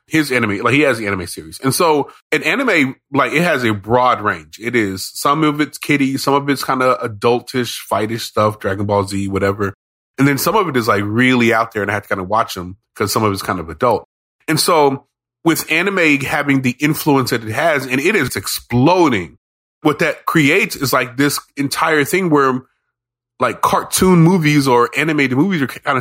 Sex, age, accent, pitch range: male, 20-39, American, 115-160 Hz